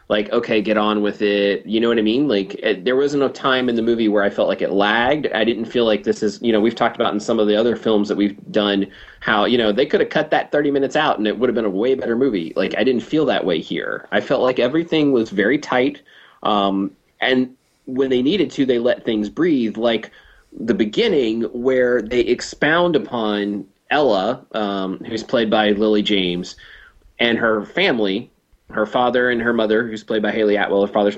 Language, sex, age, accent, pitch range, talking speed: English, male, 30-49, American, 105-130 Hz, 225 wpm